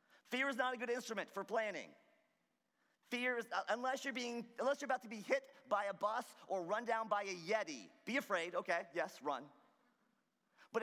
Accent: American